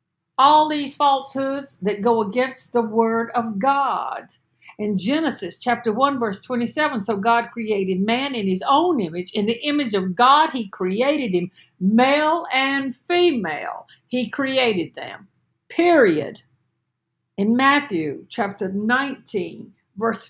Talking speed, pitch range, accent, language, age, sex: 130 wpm, 205-265 Hz, American, English, 50-69, female